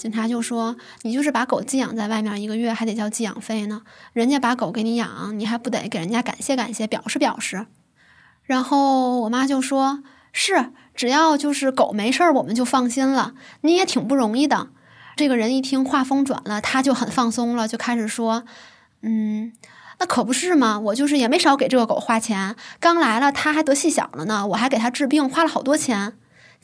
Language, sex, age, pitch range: Chinese, female, 20-39, 225-285 Hz